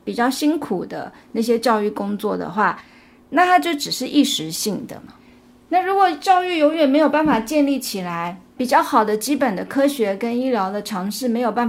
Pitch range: 220-280 Hz